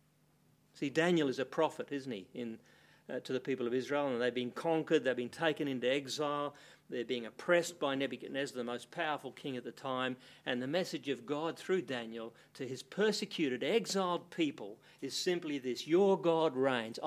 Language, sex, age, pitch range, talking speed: English, male, 50-69, 125-160 Hz, 185 wpm